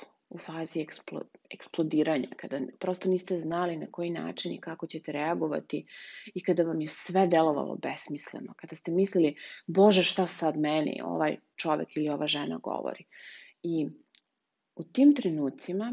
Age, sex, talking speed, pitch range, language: 30-49, female, 145 wpm, 160-190 Hz, English